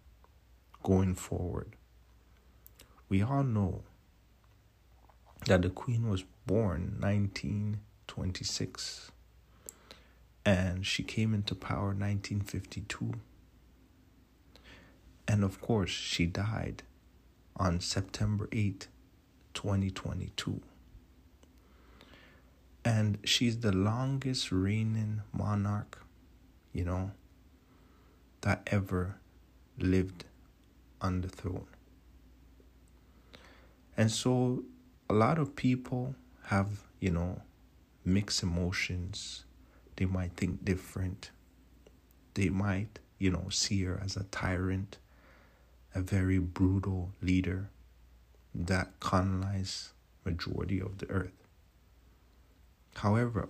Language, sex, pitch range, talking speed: English, male, 85-100 Hz, 85 wpm